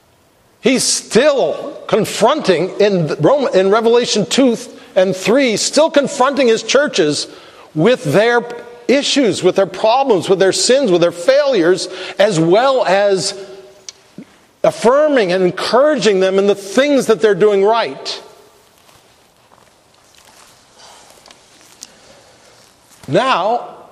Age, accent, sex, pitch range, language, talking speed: 50-69, American, male, 155-205 Hz, English, 100 wpm